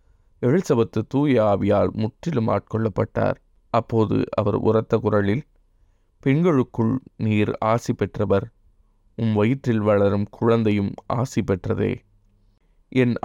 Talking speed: 80 wpm